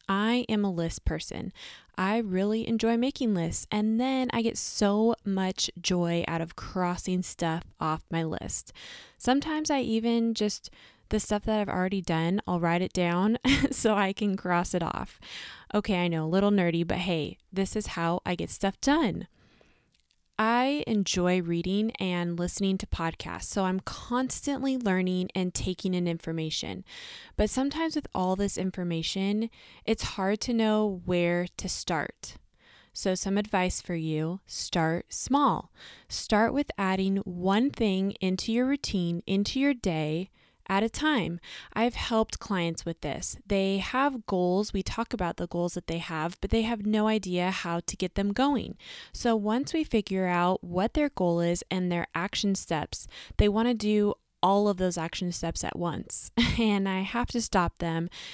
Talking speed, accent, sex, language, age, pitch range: 170 wpm, American, female, English, 20-39, 180-225 Hz